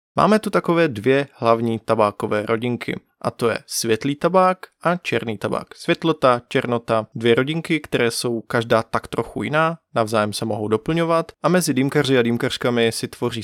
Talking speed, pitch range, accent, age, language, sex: 160 wpm, 115-160 Hz, native, 20-39, Czech, male